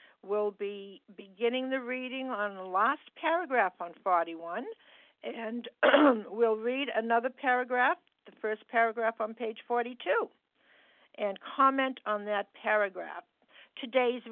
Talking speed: 115 wpm